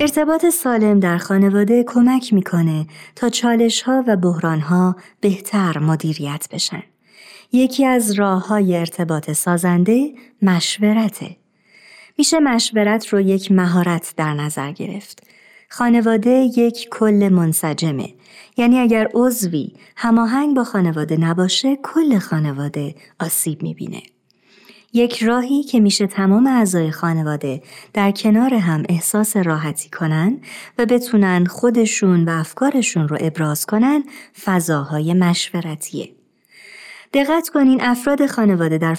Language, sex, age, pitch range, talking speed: Persian, male, 30-49, 170-235 Hz, 110 wpm